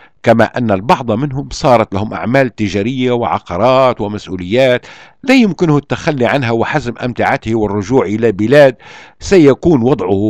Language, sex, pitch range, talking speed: Arabic, male, 105-135 Hz, 120 wpm